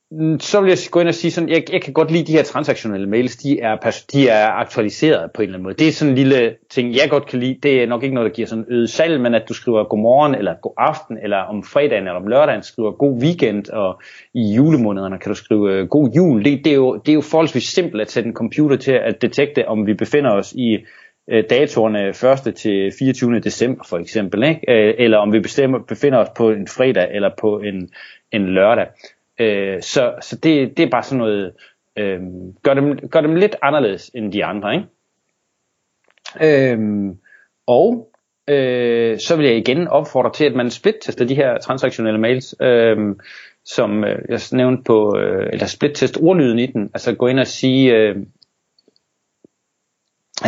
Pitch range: 110-140 Hz